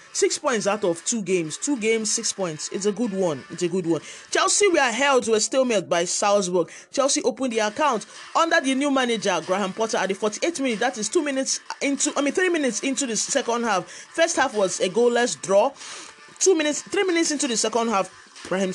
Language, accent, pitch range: English, Nigerian, 190-280 Hz